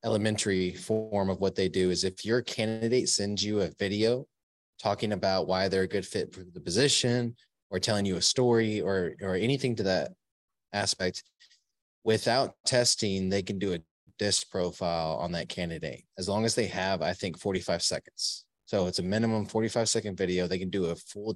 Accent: American